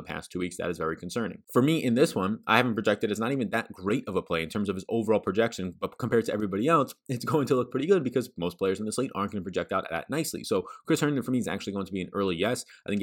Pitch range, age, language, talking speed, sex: 90-105 Hz, 20-39, English, 320 wpm, male